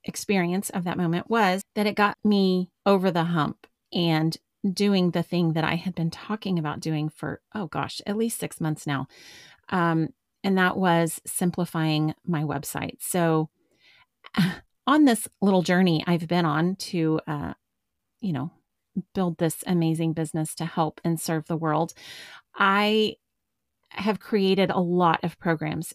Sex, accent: female, American